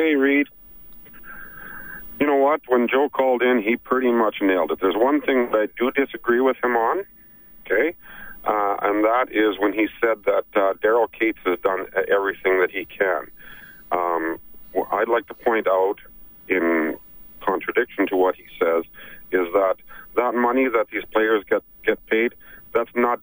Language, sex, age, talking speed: English, male, 50-69, 175 wpm